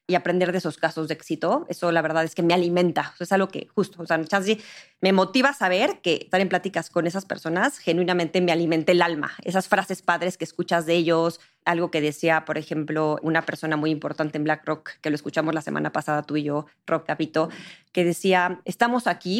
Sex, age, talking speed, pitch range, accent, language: female, 20-39, 215 wpm, 155-185 Hz, Mexican, Spanish